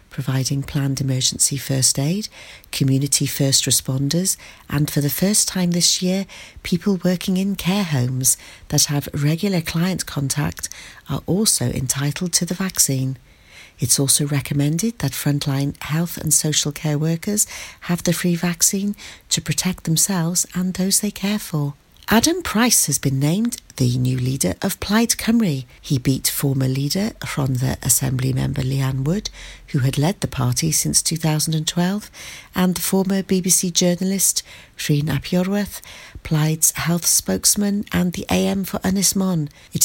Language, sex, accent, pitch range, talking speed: English, female, British, 140-185 Hz, 145 wpm